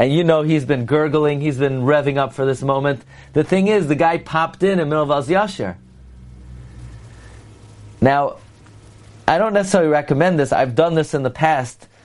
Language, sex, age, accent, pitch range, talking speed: English, male, 30-49, American, 115-155 Hz, 185 wpm